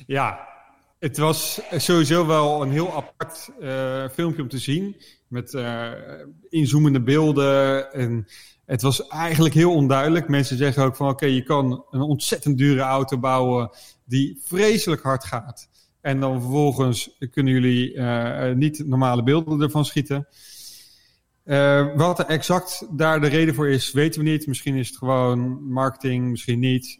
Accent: Dutch